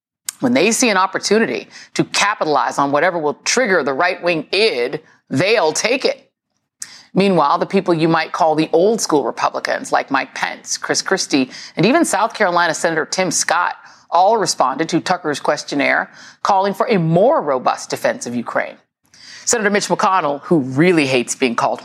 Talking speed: 170 wpm